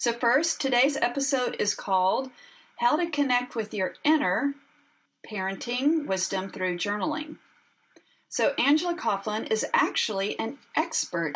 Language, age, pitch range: English, 40-59, 195-285 Hz